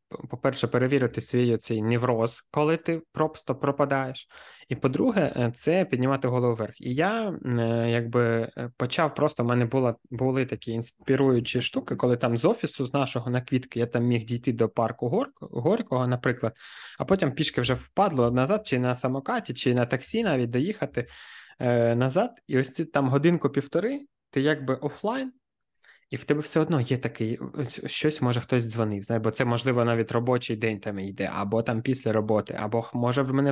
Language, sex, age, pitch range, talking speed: Ukrainian, male, 20-39, 115-140 Hz, 165 wpm